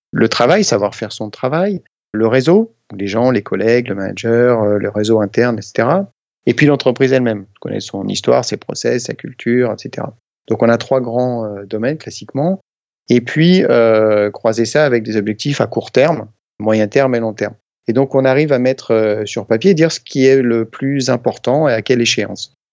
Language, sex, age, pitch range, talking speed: French, male, 30-49, 110-135 Hz, 195 wpm